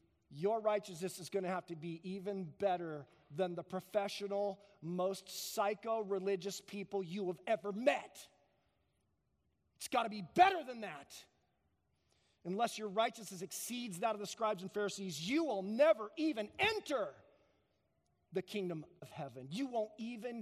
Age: 40-59